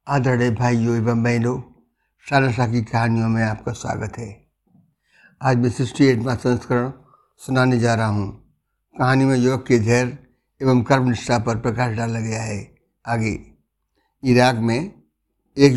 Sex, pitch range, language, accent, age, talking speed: male, 115-140 Hz, Hindi, native, 60-79, 135 wpm